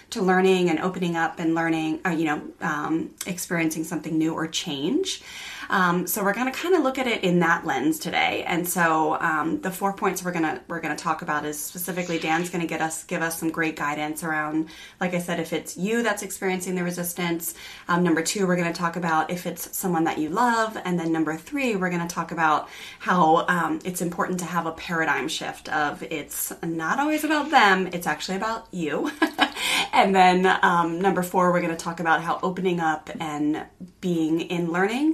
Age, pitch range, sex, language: 20-39, 165-195 Hz, female, English